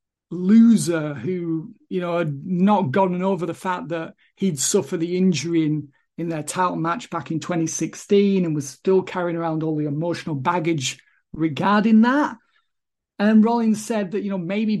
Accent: British